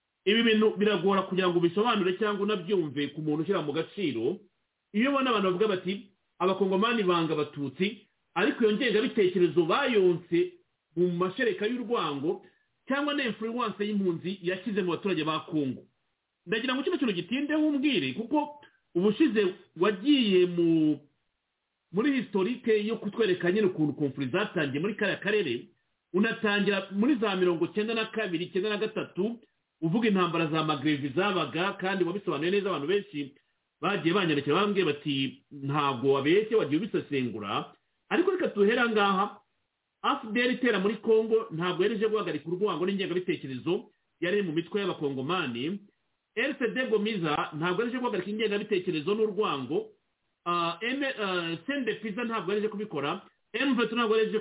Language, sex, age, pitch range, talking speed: English, male, 40-59, 175-225 Hz, 125 wpm